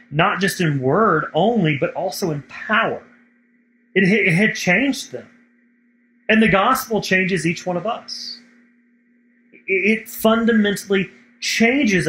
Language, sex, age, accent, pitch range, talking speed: English, male, 30-49, American, 150-240 Hz, 130 wpm